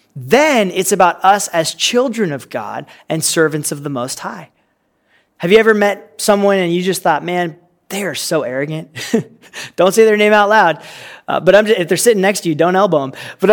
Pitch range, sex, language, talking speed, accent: 170-215 Hz, male, English, 215 wpm, American